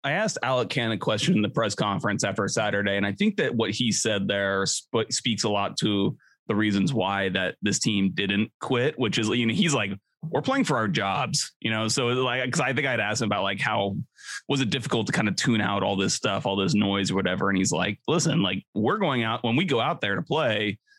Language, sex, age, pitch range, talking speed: English, male, 30-49, 105-130 Hz, 250 wpm